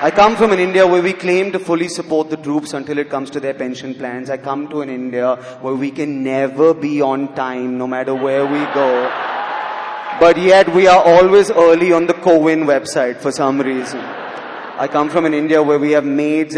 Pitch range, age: 125-150 Hz, 30-49